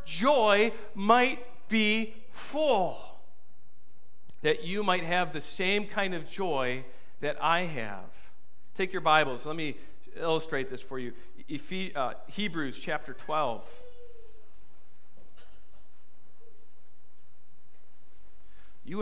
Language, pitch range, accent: English, 155-235 Hz, American